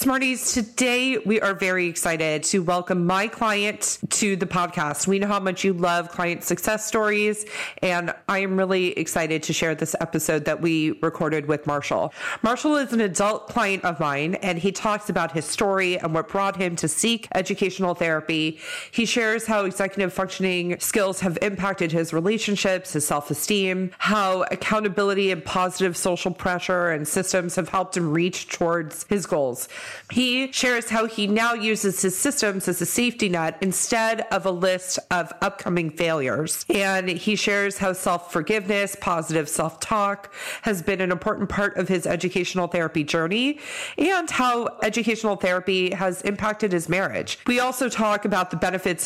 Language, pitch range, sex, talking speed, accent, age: English, 175-210 Hz, female, 165 wpm, American, 30-49